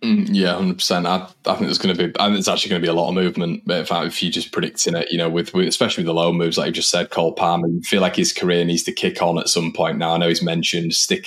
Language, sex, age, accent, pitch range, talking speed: English, male, 20-39, British, 85-110 Hz, 315 wpm